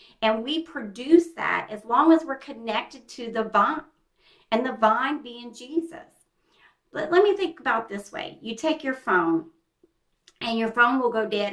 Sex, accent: female, American